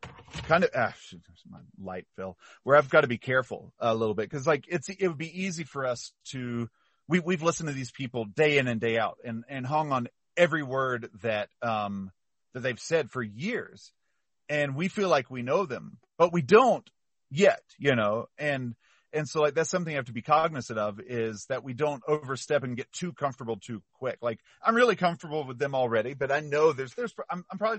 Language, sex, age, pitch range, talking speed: English, male, 40-59, 115-155 Hz, 215 wpm